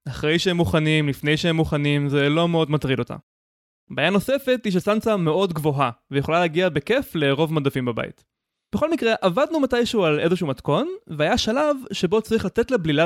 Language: Hebrew